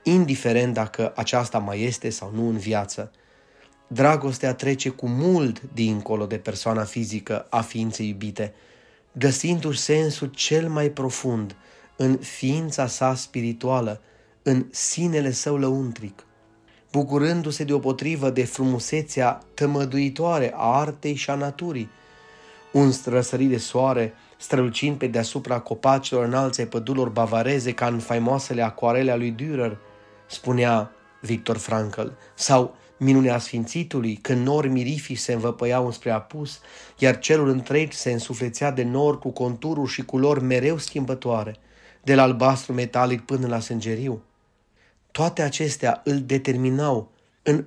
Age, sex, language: 30-49, male, Romanian